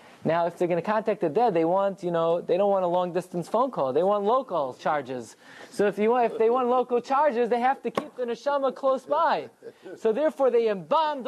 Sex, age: male, 20-39